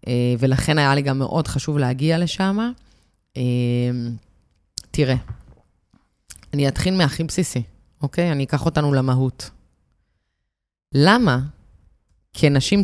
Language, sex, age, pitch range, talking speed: Hebrew, female, 20-39, 120-180 Hz, 105 wpm